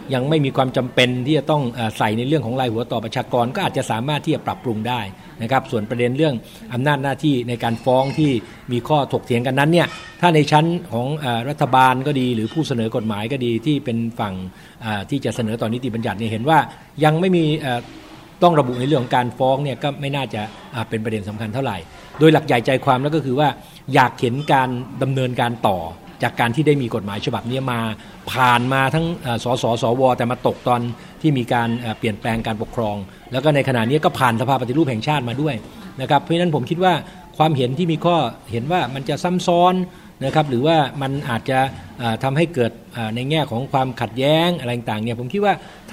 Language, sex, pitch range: Thai, male, 115-150 Hz